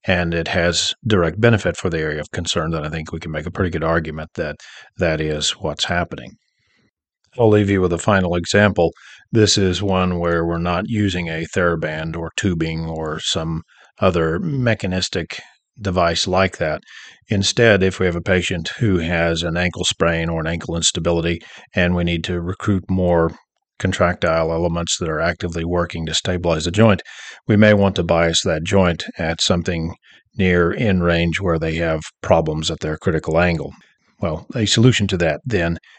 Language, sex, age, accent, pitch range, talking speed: English, male, 40-59, American, 80-95 Hz, 180 wpm